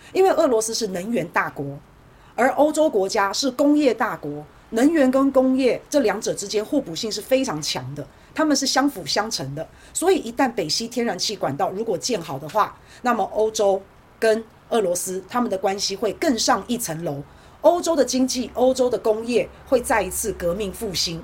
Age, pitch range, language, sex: 40-59, 185-255 Hz, Chinese, female